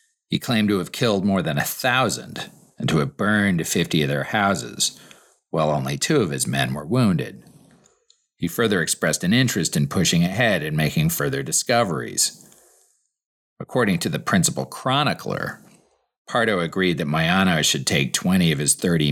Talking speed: 165 wpm